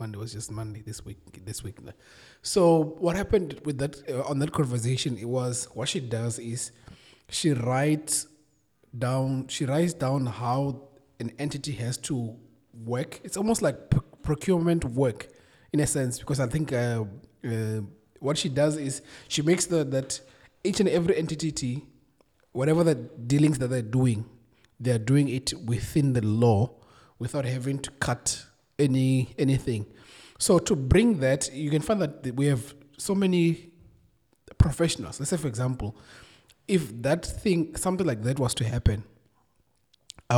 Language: English